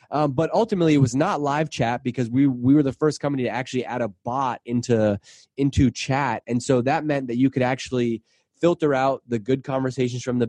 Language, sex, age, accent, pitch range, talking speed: English, male, 20-39, American, 120-145 Hz, 215 wpm